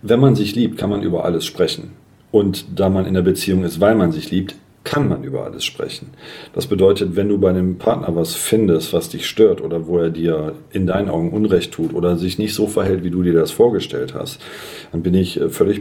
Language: German